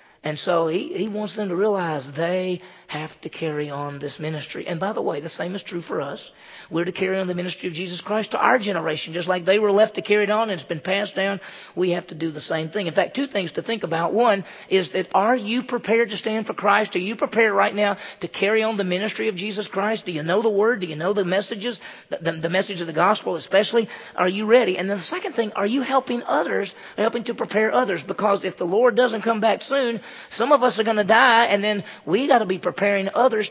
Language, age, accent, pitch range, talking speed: English, 40-59, American, 165-215 Hz, 260 wpm